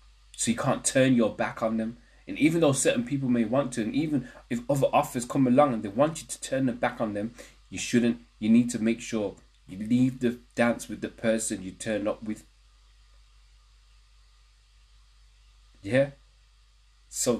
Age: 20-39